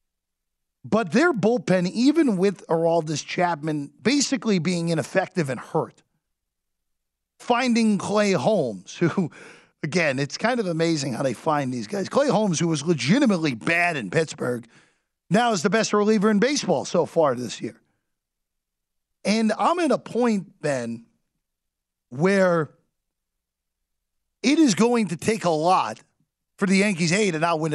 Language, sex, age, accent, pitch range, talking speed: English, male, 40-59, American, 140-205 Hz, 145 wpm